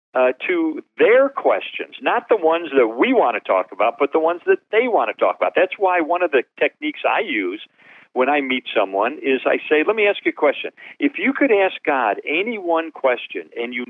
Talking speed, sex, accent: 230 wpm, male, American